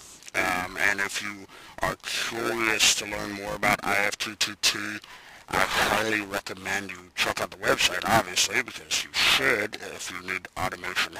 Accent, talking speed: American, 145 wpm